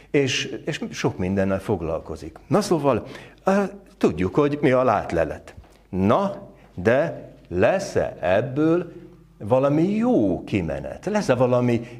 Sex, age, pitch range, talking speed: male, 60-79, 105-155 Hz, 115 wpm